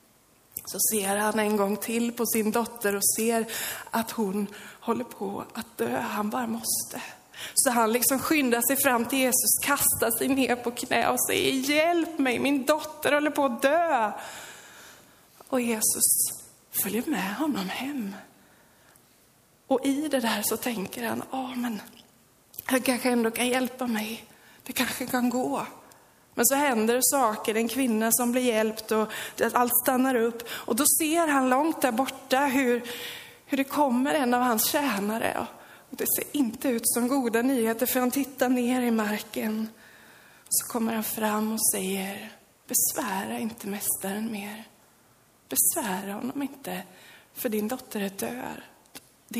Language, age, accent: Swedish, 20-39, native